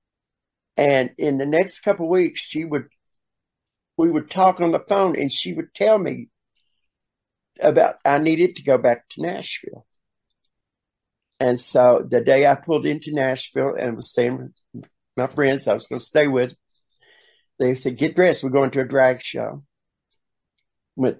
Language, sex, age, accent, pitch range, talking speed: English, male, 60-79, American, 120-145 Hz, 165 wpm